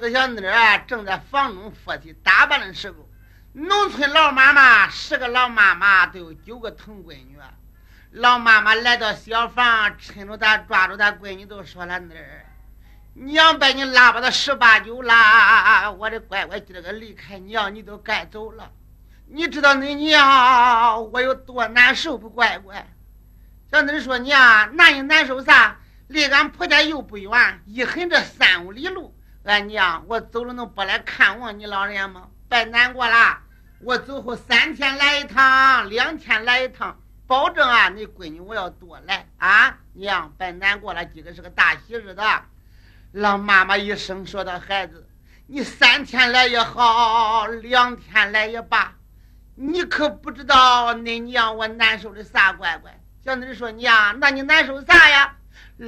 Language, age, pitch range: Chinese, 60-79, 200-260 Hz